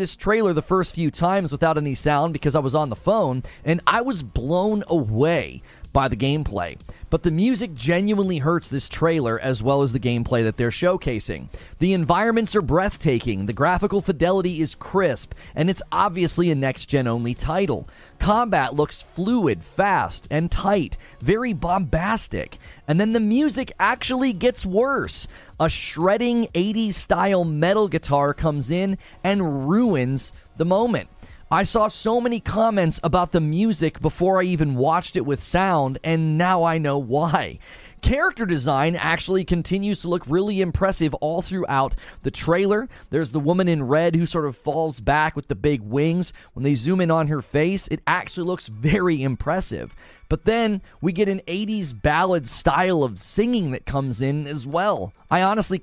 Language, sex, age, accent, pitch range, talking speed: English, male, 30-49, American, 145-190 Hz, 170 wpm